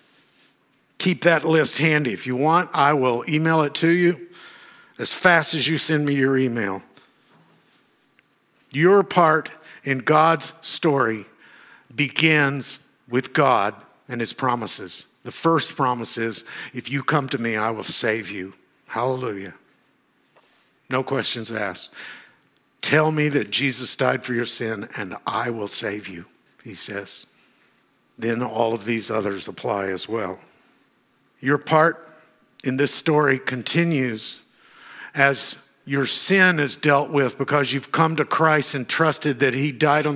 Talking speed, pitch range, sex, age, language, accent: 140 wpm, 125-160 Hz, male, 50-69, English, American